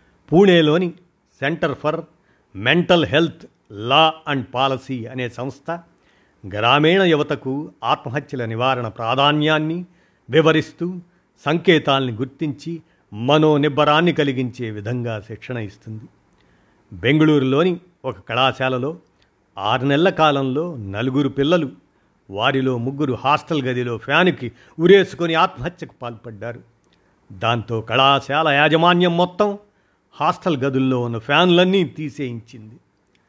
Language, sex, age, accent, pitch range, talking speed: Telugu, male, 50-69, native, 120-160 Hz, 85 wpm